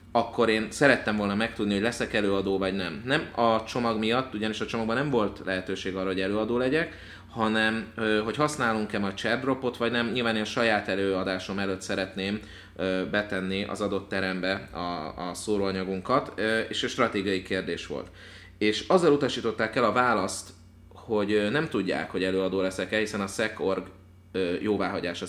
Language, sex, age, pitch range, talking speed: Hungarian, male, 30-49, 95-115 Hz, 155 wpm